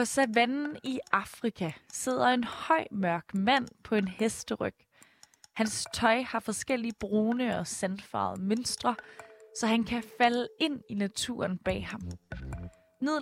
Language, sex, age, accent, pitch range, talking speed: Danish, female, 20-39, native, 190-240 Hz, 135 wpm